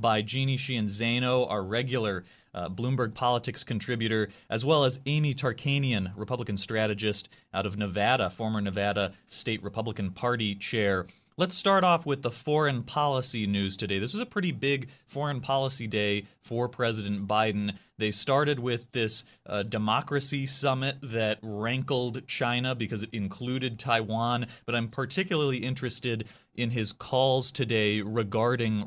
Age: 30-49